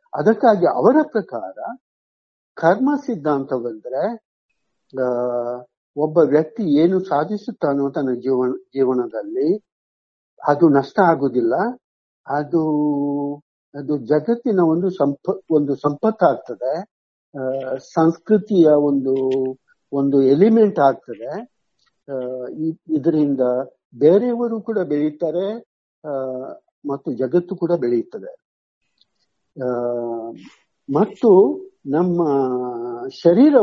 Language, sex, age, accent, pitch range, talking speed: Kannada, male, 60-79, native, 130-185 Hz, 70 wpm